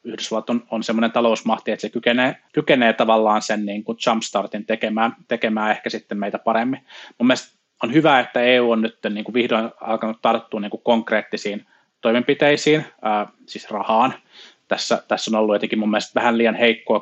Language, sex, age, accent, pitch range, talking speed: Finnish, male, 20-39, native, 105-120 Hz, 150 wpm